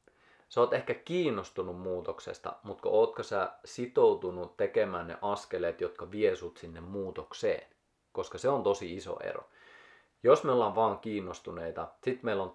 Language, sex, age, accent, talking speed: Finnish, male, 30-49, native, 145 wpm